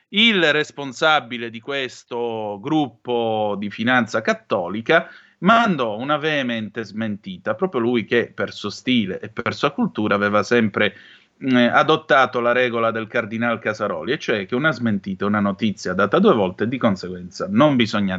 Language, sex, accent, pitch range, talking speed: Italian, male, native, 115-150 Hz, 155 wpm